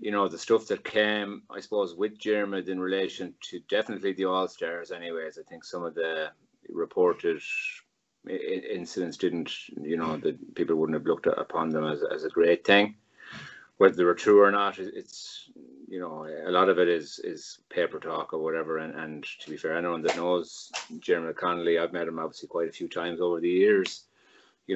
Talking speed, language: 200 wpm, English